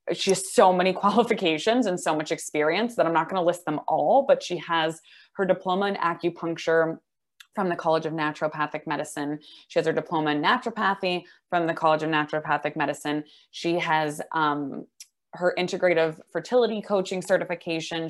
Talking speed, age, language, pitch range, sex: 165 wpm, 20-39, English, 155-190 Hz, female